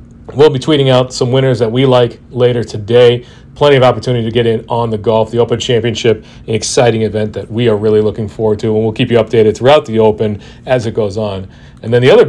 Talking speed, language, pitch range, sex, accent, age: 240 wpm, English, 115-135 Hz, male, American, 40-59